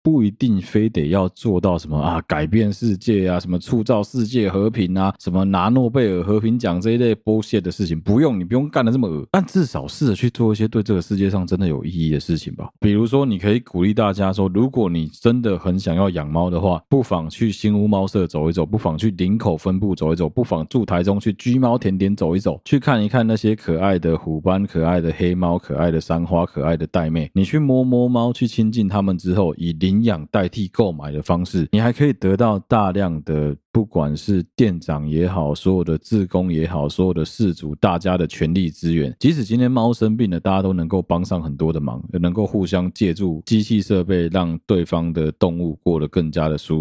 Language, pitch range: Chinese, 85-110 Hz